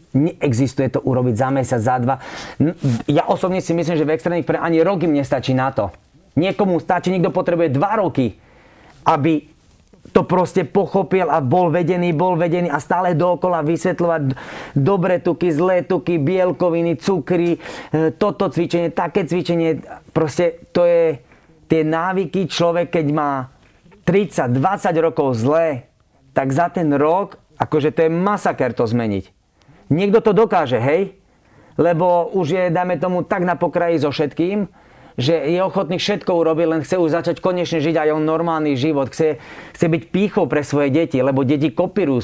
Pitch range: 140-180 Hz